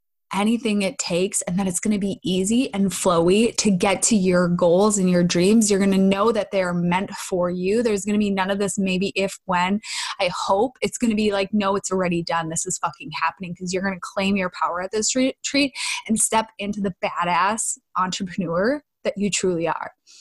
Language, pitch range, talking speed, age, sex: English, 190-230 Hz, 220 wpm, 20-39, female